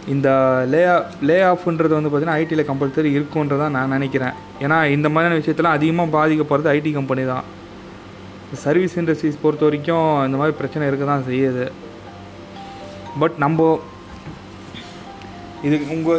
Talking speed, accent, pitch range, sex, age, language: 115 wpm, native, 135-160 Hz, male, 20-39, Tamil